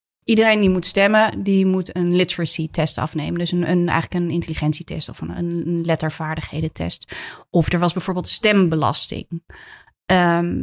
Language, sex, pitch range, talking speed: Dutch, female, 165-200 Hz, 140 wpm